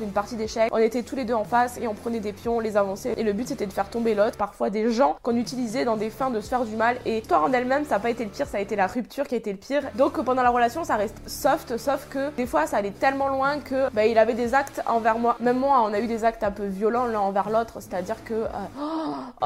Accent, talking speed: French, 300 wpm